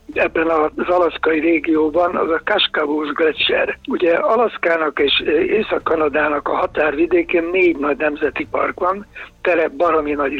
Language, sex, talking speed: Hungarian, male, 125 wpm